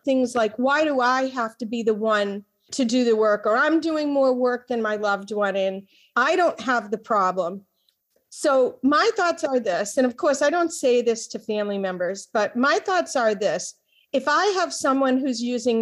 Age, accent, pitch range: 40-59, American, 225-285 Hz